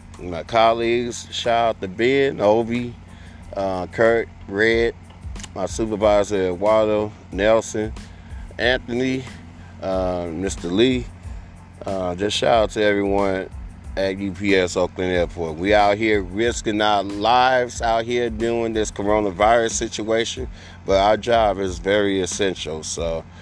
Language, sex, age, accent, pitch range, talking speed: English, male, 30-49, American, 90-110 Hz, 120 wpm